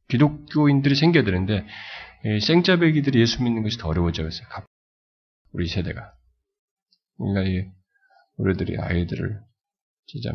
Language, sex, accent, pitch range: Korean, male, native, 90-130 Hz